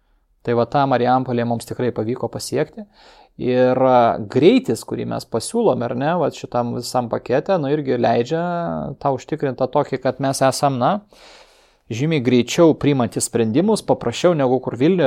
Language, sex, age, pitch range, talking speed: English, male, 30-49, 120-140 Hz, 140 wpm